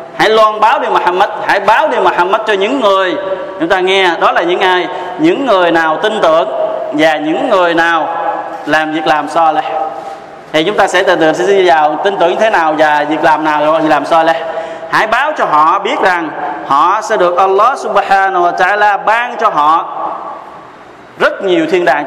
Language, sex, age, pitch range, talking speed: Vietnamese, male, 20-39, 160-210 Hz, 205 wpm